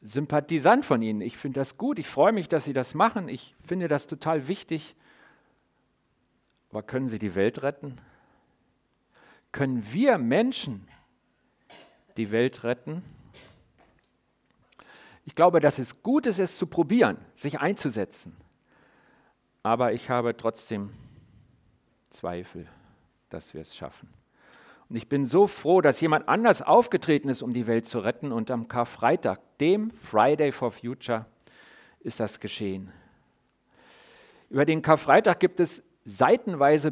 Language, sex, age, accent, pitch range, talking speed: German, male, 50-69, German, 120-185 Hz, 130 wpm